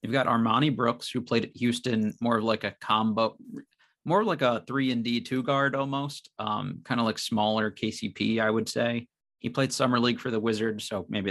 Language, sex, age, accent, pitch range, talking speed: English, male, 30-49, American, 100-115 Hz, 205 wpm